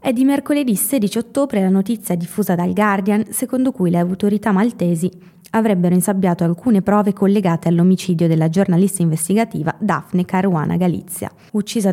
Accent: native